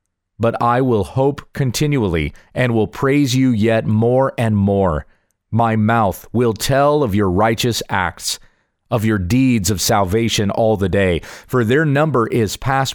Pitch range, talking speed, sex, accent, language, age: 100-130 Hz, 160 wpm, male, American, English, 30-49